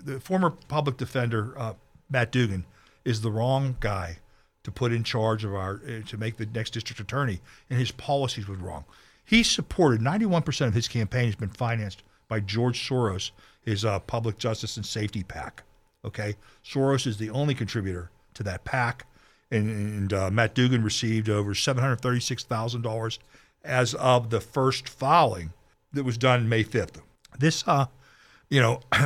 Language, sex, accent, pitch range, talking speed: English, male, American, 110-140 Hz, 165 wpm